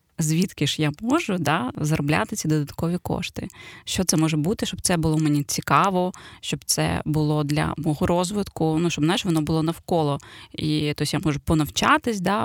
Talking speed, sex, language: 175 wpm, female, Ukrainian